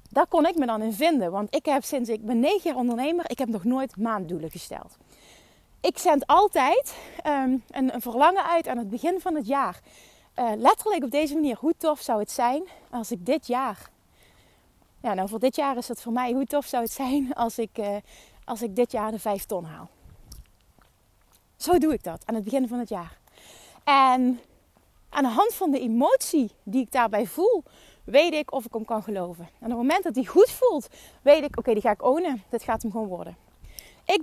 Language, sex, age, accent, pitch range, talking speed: Dutch, female, 30-49, Dutch, 235-320 Hz, 215 wpm